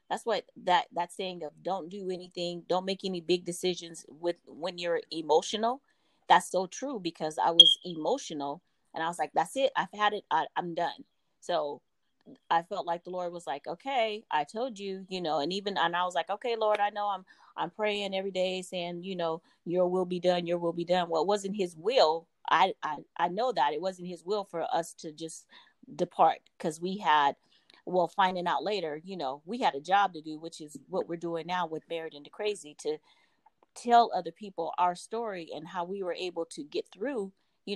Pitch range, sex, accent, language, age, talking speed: 170-210 Hz, female, American, English, 30-49, 215 wpm